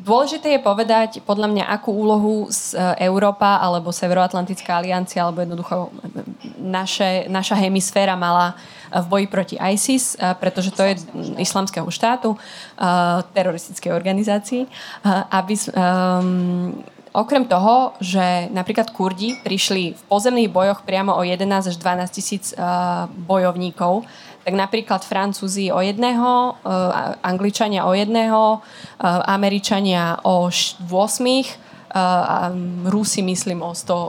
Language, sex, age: Slovak, female, 20-39